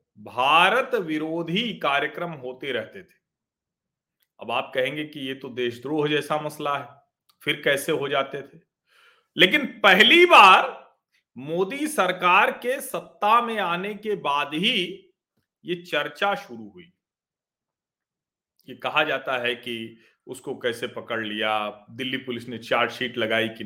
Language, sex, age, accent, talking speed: Hindi, male, 40-59, native, 130 wpm